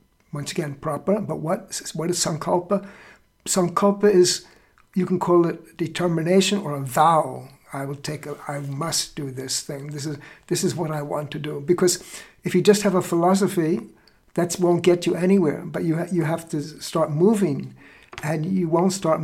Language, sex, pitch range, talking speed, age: English, male, 145-180 Hz, 190 wpm, 60-79